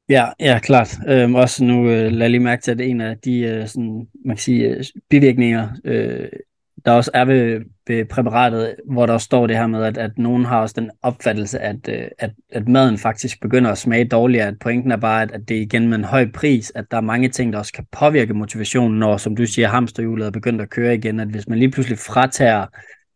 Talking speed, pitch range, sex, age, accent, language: 240 wpm, 110-125 Hz, male, 20-39, native, Danish